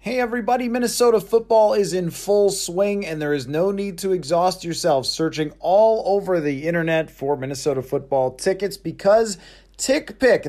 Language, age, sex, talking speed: English, 30-49, male, 155 wpm